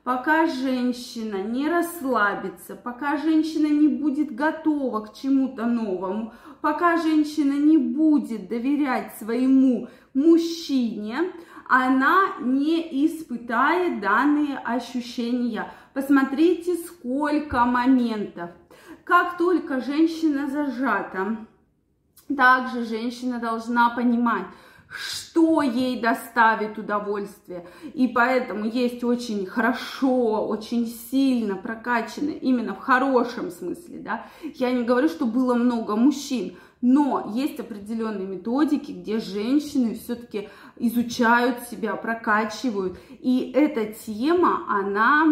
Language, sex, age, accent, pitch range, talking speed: Russian, female, 20-39, native, 230-295 Hz, 95 wpm